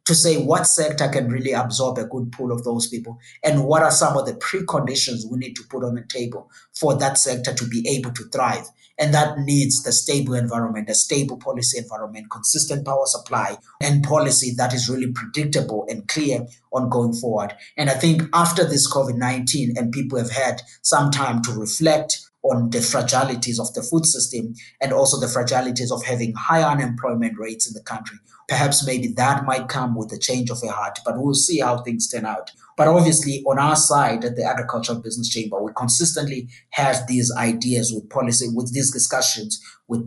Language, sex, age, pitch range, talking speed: English, male, 30-49, 120-140 Hz, 195 wpm